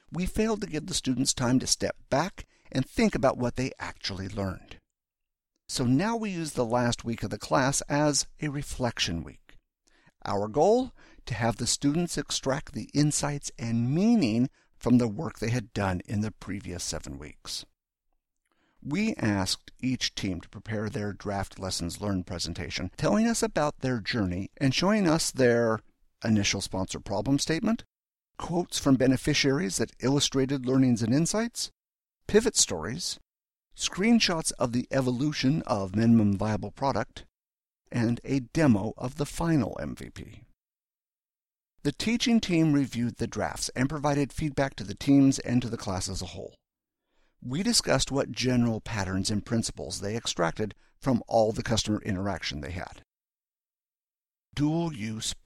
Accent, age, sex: American, 50-69, male